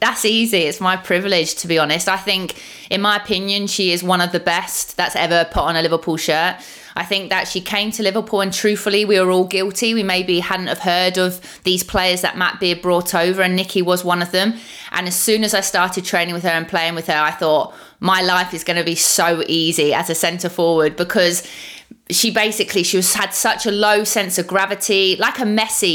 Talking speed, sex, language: 230 wpm, female, English